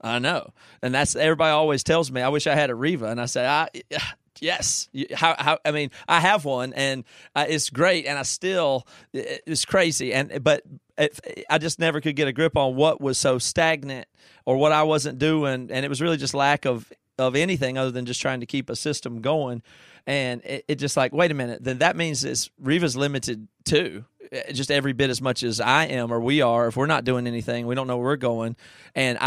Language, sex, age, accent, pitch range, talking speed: English, male, 30-49, American, 125-150 Hz, 225 wpm